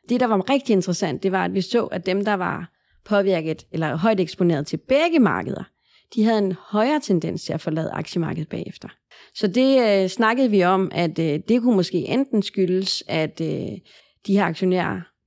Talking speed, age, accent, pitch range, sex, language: 195 wpm, 30-49, native, 170-210 Hz, female, Danish